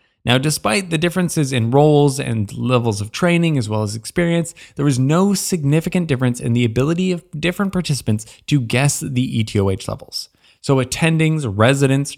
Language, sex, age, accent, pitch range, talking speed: English, male, 20-39, American, 115-160 Hz, 165 wpm